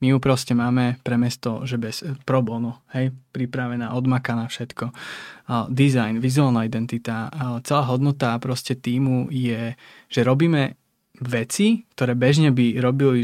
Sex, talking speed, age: male, 140 wpm, 20-39